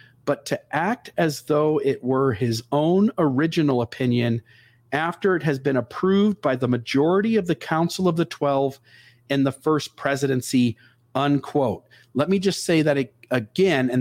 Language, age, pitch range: English, 40-59, 125-170 Hz